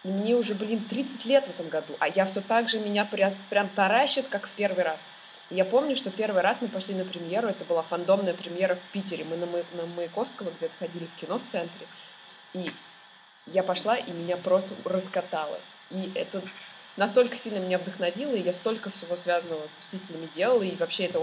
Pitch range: 175-225 Hz